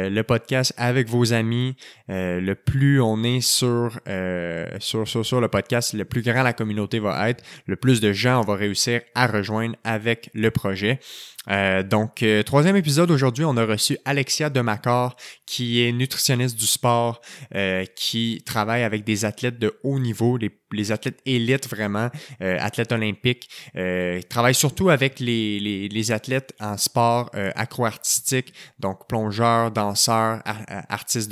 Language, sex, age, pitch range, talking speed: French, male, 20-39, 105-125 Hz, 165 wpm